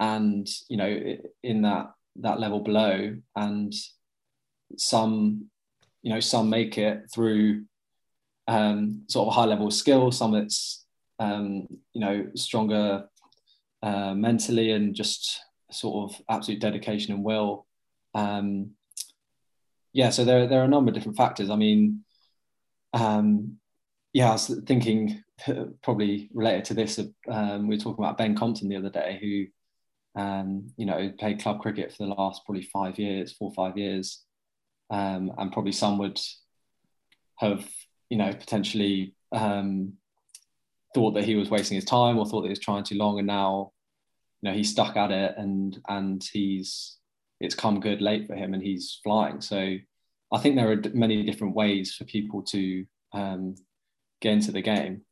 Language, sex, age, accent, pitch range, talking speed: English, male, 20-39, British, 100-110 Hz, 165 wpm